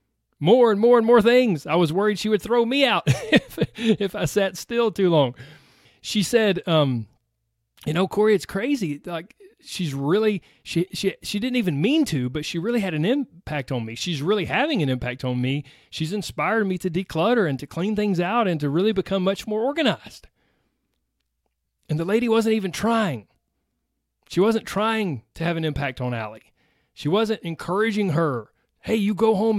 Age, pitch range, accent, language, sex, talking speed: 30-49, 140-210 Hz, American, English, male, 190 wpm